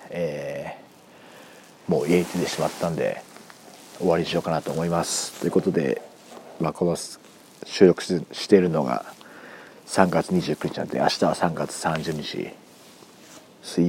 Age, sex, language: 40-59, male, Japanese